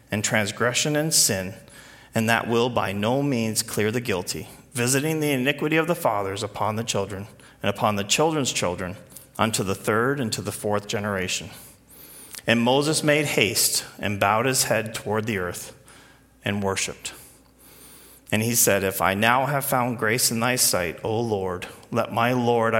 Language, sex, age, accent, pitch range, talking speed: English, male, 40-59, American, 105-135 Hz, 170 wpm